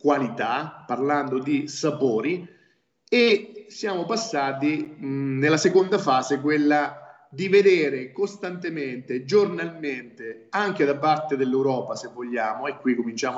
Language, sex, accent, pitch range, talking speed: Italian, male, native, 130-175 Hz, 110 wpm